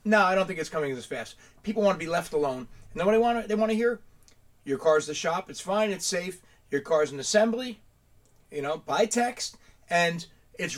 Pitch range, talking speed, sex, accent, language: 145-200 Hz, 225 wpm, male, American, English